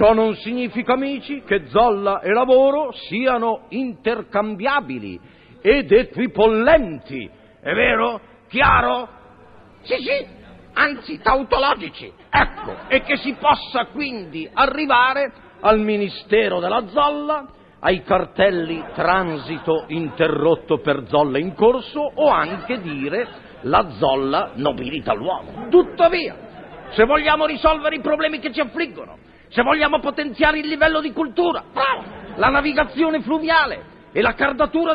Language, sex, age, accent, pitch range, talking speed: Italian, male, 50-69, native, 210-290 Hz, 115 wpm